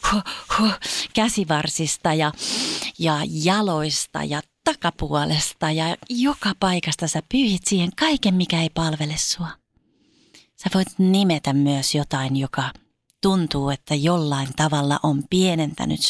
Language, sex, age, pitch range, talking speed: Finnish, female, 30-49, 150-190 Hz, 110 wpm